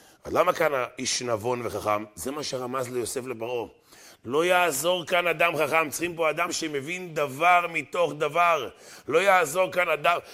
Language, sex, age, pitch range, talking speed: Hebrew, male, 30-49, 120-160 Hz, 155 wpm